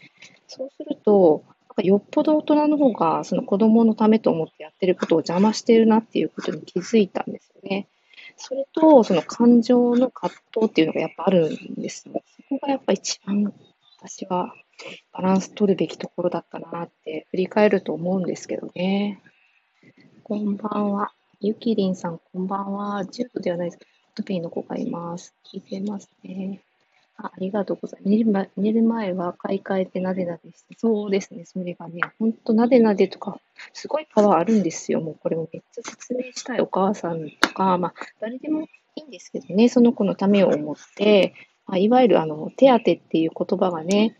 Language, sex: Japanese, female